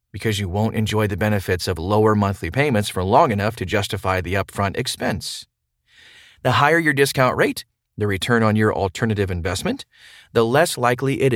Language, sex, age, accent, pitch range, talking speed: English, male, 30-49, American, 105-130 Hz, 175 wpm